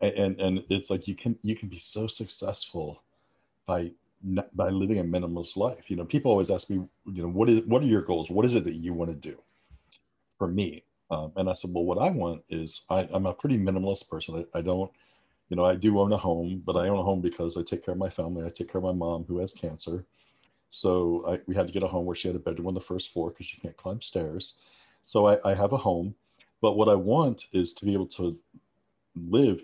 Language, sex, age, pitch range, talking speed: English, male, 50-69, 85-100 Hz, 255 wpm